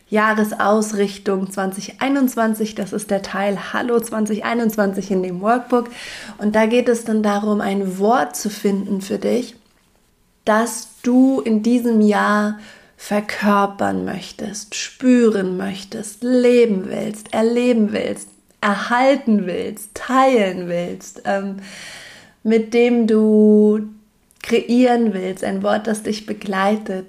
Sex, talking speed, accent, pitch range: female, 115 wpm, German, 200-230 Hz